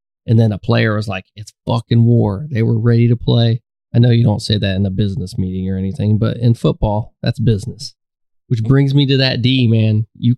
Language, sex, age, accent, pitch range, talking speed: English, male, 20-39, American, 115-130 Hz, 225 wpm